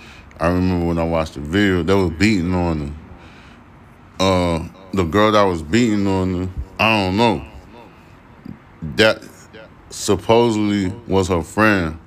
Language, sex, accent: English, male, American